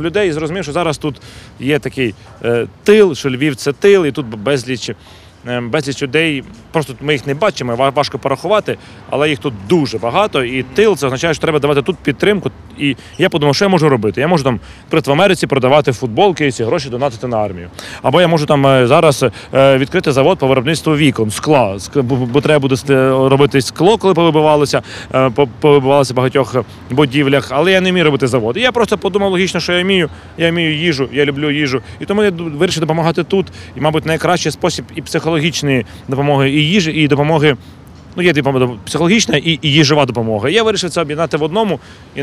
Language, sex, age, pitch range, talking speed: Ukrainian, male, 30-49, 125-160 Hz, 190 wpm